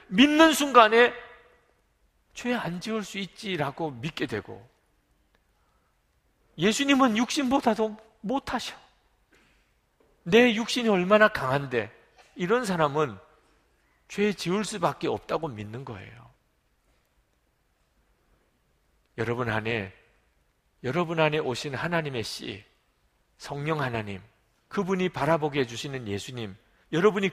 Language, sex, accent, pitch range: Korean, male, native, 135-215 Hz